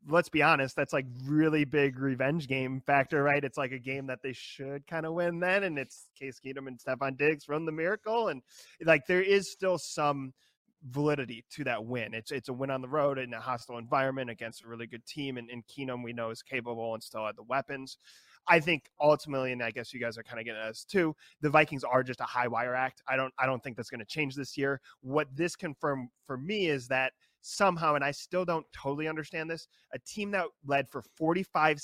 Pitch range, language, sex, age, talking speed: 135-180 Hz, English, male, 20-39, 235 wpm